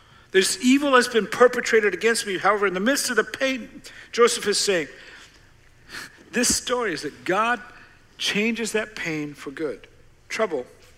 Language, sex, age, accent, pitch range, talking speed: English, male, 60-79, American, 150-220 Hz, 155 wpm